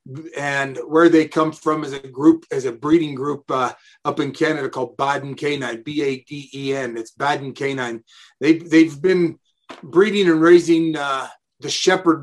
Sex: male